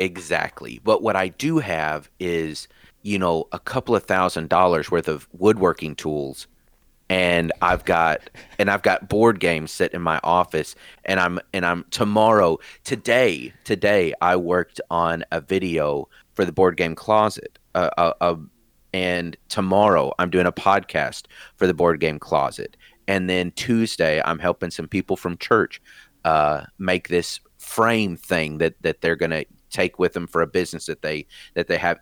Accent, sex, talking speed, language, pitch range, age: American, male, 170 wpm, English, 85-105 Hz, 30-49